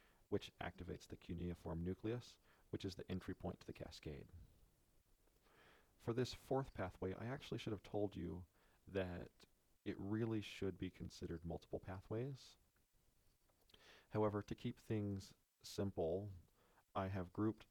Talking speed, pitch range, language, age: 130 wpm, 90-105 Hz, English, 40-59